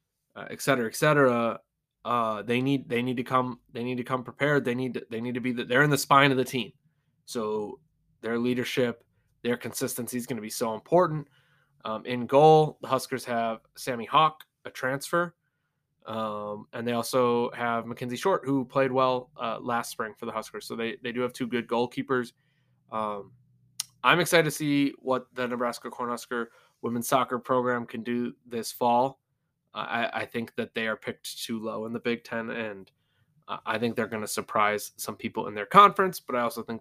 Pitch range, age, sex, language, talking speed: 115-135 Hz, 20-39, male, English, 195 wpm